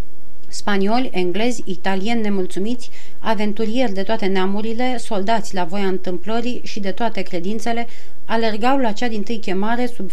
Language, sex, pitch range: Romanian, female, 185-225 Hz